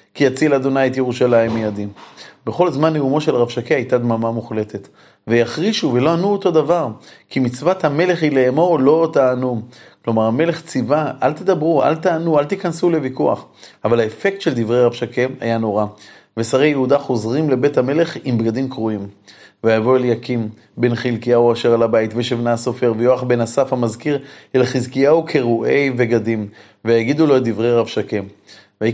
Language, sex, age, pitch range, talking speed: Hebrew, male, 30-49, 120-140 Hz, 155 wpm